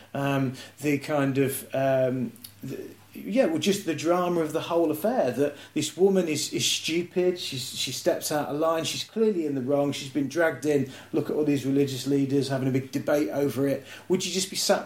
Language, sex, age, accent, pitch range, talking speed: English, male, 40-59, British, 130-165 Hz, 215 wpm